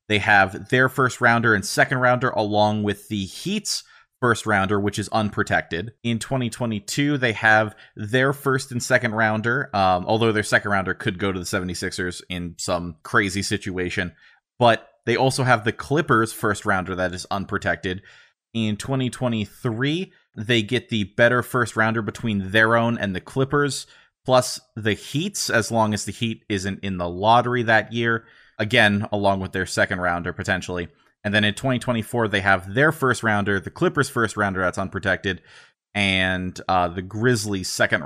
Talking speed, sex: 165 wpm, male